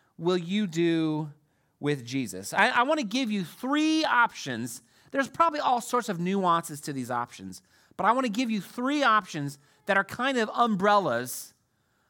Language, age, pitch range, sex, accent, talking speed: English, 30-49, 145-235 Hz, male, American, 170 wpm